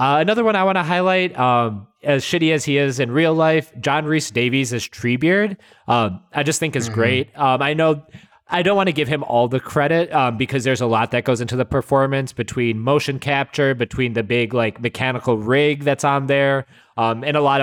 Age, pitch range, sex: 20-39, 120-145 Hz, male